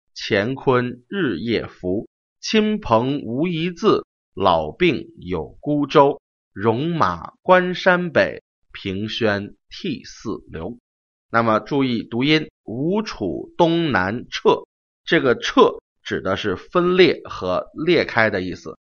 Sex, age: male, 30-49